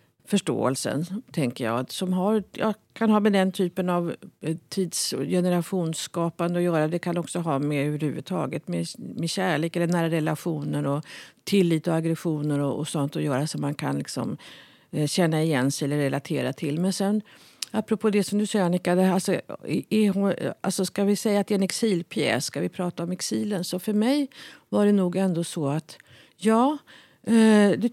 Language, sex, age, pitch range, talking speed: Swedish, female, 50-69, 160-210 Hz, 180 wpm